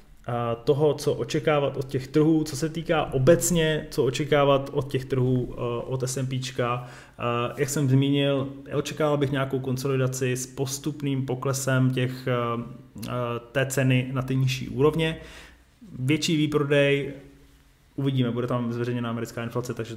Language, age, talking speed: Czech, 20-39, 130 wpm